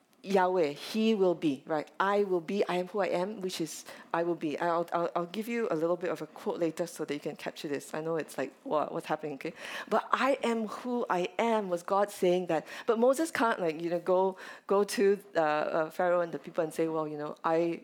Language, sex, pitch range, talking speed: English, female, 165-220 Hz, 250 wpm